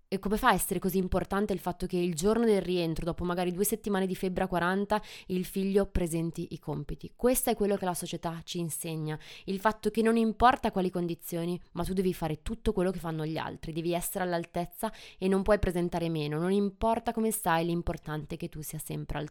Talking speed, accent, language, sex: 220 wpm, native, Italian, female